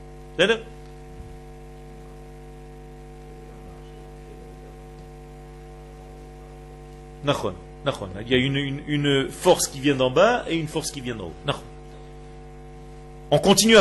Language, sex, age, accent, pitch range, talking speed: French, male, 40-59, French, 135-180 Hz, 85 wpm